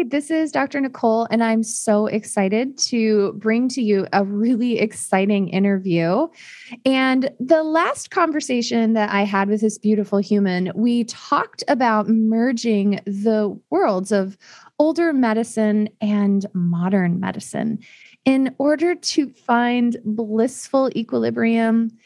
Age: 20-39